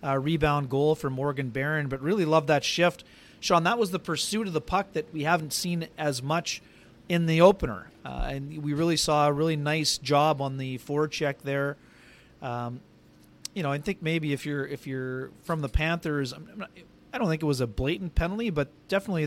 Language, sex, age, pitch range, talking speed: English, male, 30-49, 140-165 Hz, 210 wpm